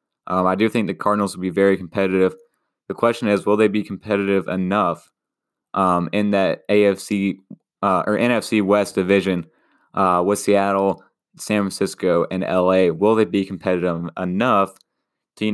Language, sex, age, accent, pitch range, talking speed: English, male, 20-39, American, 95-105 Hz, 160 wpm